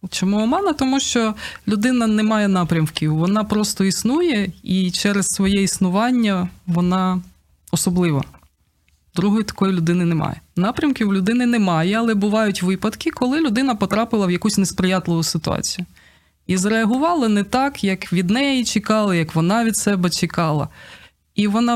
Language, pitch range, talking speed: Ukrainian, 165-215 Hz, 140 wpm